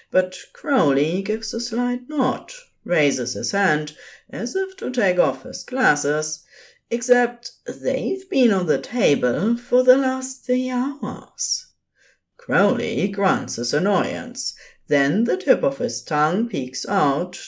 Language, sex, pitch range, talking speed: English, female, 165-255 Hz, 135 wpm